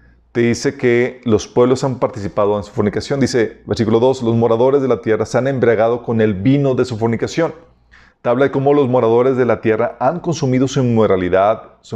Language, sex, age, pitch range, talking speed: Spanish, male, 40-59, 90-125 Hz, 205 wpm